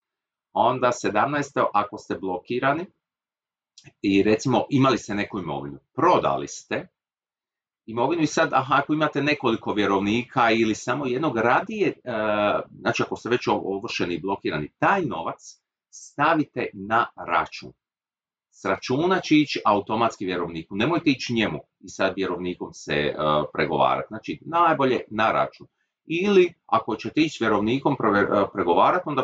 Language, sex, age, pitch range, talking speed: Croatian, male, 40-59, 100-135 Hz, 125 wpm